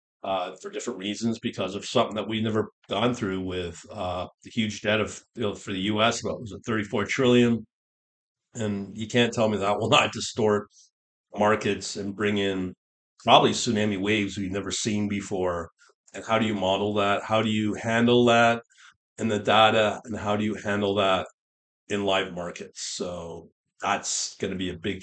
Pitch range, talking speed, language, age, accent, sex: 95-110 Hz, 185 wpm, English, 50-69, American, male